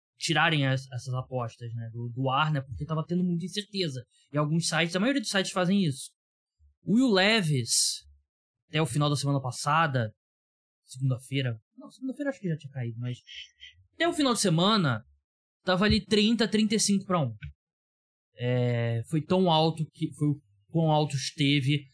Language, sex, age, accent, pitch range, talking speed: Portuguese, male, 20-39, Brazilian, 125-170 Hz, 170 wpm